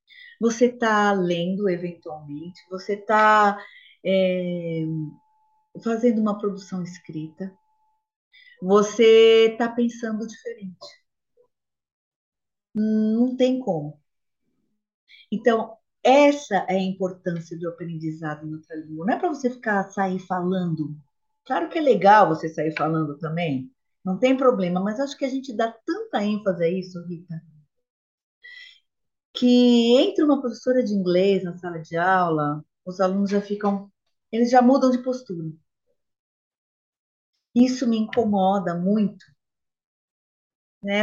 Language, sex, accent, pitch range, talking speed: Portuguese, female, Brazilian, 180-245 Hz, 115 wpm